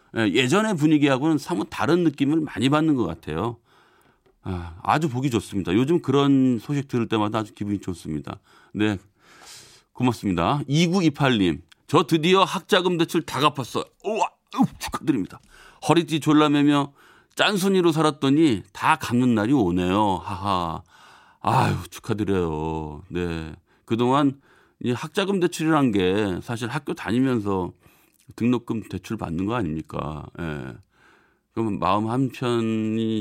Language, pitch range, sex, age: Korean, 105-155 Hz, male, 30-49